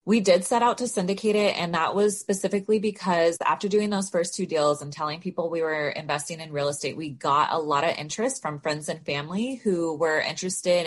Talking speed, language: 220 wpm, English